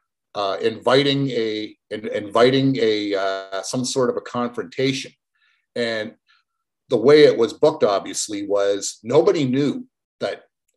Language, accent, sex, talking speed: English, American, male, 130 wpm